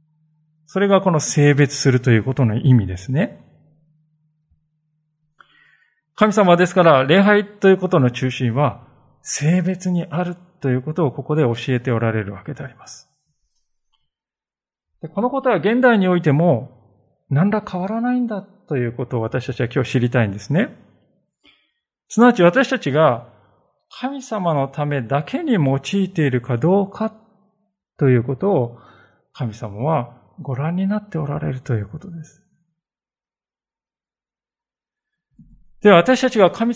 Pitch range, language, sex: 130-190 Hz, Japanese, male